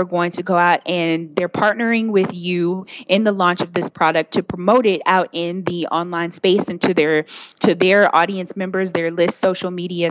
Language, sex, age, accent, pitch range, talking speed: English, female, 20-39, American, 175-220 Hz, 200 wpm